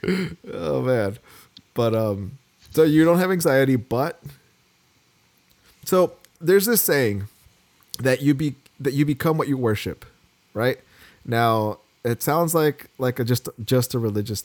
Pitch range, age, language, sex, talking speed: 105-140 Hz, 30-49, English, male, 140 wpm